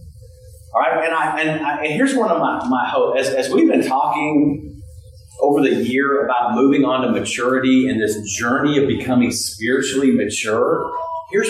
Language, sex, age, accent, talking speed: English, male, 40-59, American, 175 wpm